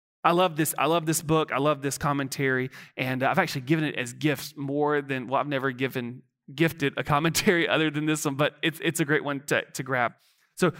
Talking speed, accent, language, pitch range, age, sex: 230 wpm, American, English, 130-160 Hz, 30-49, male